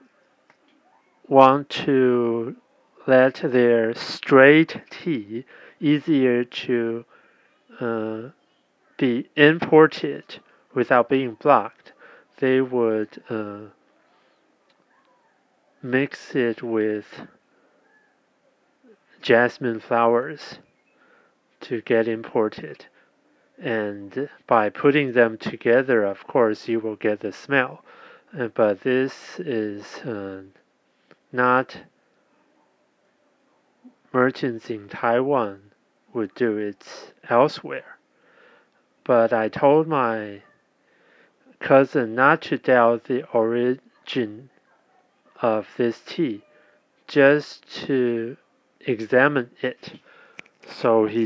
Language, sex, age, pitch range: Chinese, male, 40-59, 110-135 Hz